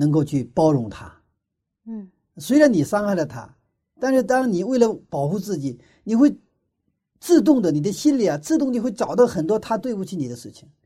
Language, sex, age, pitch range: Chinese, male, 50-69, 150-240 Hz